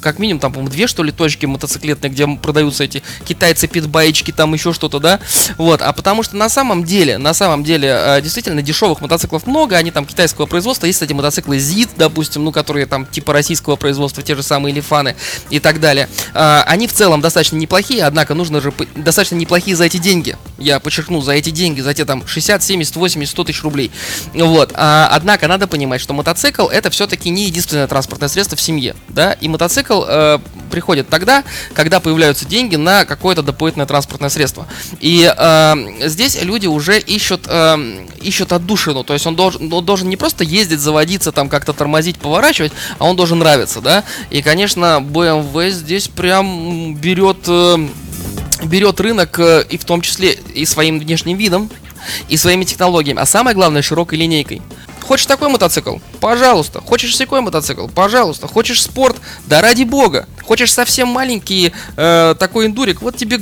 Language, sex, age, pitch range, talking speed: Russian, male, 20-39, 150-190 Hz, 170 wpm